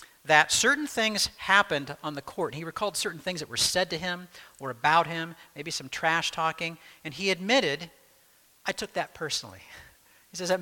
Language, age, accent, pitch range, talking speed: English, 50-69, American, 140-185 Hz, 185 wpm